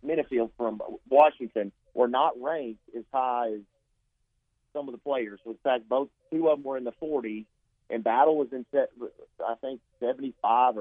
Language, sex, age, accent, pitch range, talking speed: English, male, 40-59, American, 115-135 Hz, 165 wpm